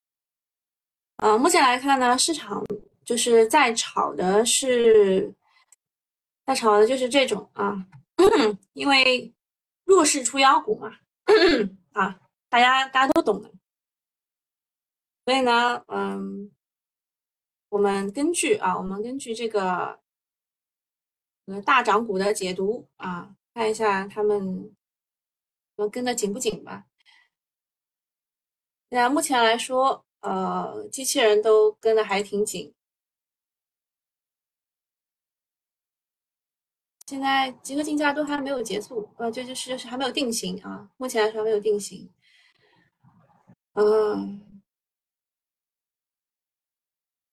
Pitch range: 205-270 Hz